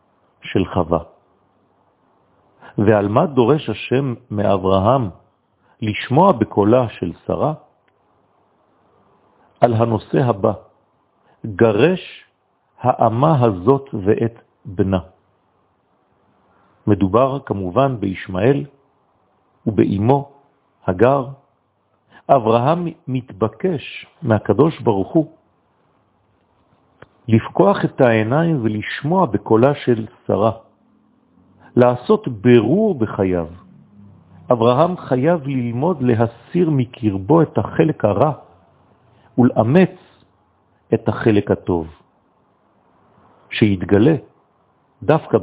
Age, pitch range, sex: 50-69, 105-140 Hz, male